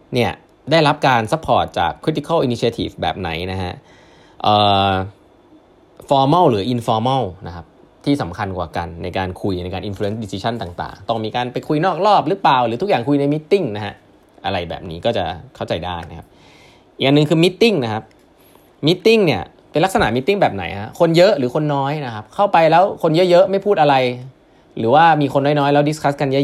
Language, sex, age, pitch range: Thai, male, 20-39, 105-155 Hz